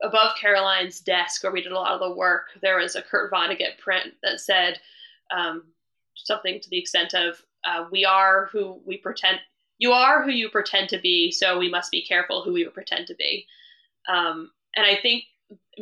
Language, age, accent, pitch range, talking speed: English, 20-39, American, 185-235 Hz, 200 wpm